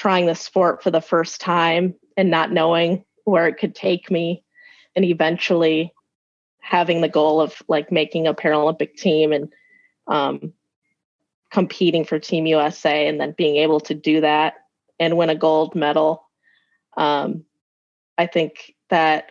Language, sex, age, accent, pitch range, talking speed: English, female, 20-39, American, 155-180 Hz, 150 wpm